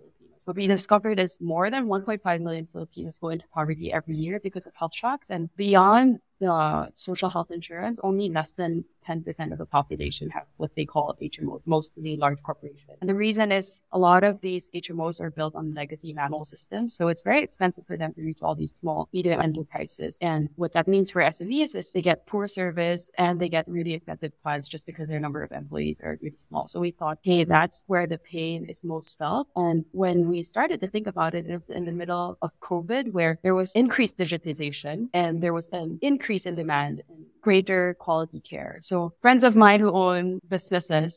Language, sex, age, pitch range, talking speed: English, female, 20-39, 155-185 Hz, 205 wpm